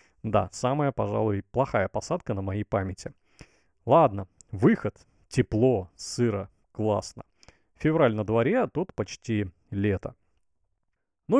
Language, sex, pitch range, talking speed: Russian, male, 105-155 Hz, 110 wpm